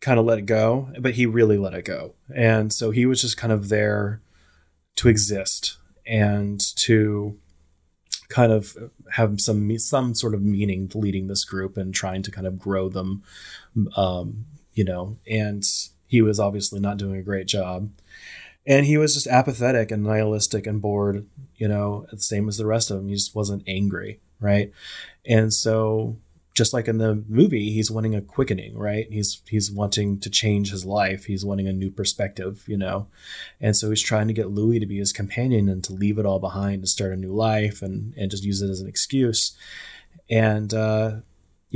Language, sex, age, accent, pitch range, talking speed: English, male, 20-39, American, 100-115 Hz, 195 wpm